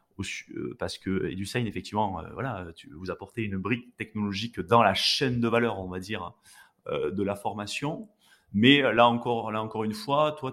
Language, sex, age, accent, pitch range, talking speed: French, male, 30-49, French, 100-130 Hz, 195 wpm